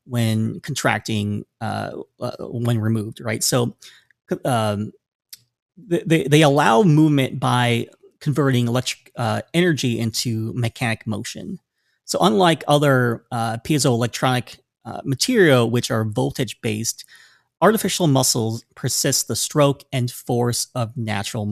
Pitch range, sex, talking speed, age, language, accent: 115-145 Hz, male, 115 wpm, 30-49, English, American